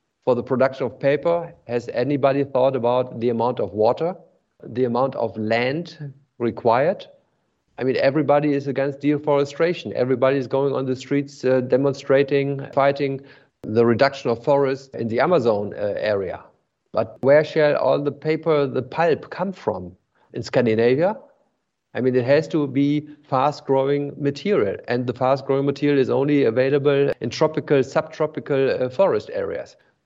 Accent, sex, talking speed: German, male, 150 wpm